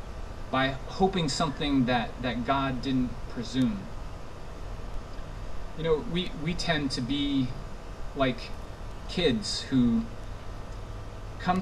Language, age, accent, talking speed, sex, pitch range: English, 30-49, American, 100 wpm, male, 105-140 Hz